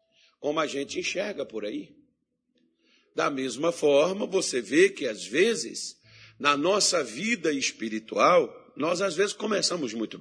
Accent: Brazilian